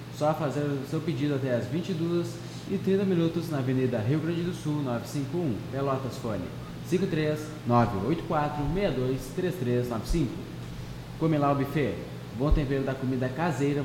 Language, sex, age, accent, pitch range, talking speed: Portuguese, male, 20-39, Brazilian, 125-155 Hz, 115 wpm